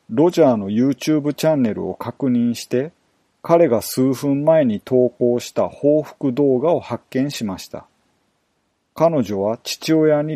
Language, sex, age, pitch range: Japanese, male, 40-59, 120-150 Hz